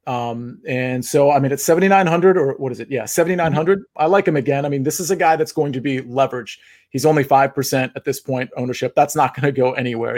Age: 40-59